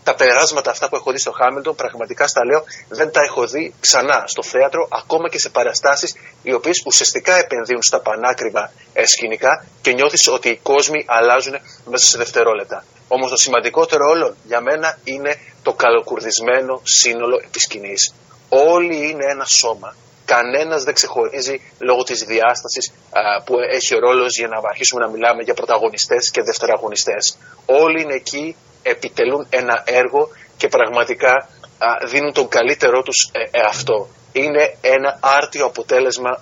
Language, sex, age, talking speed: Greek, male, 30-49, 155 wpm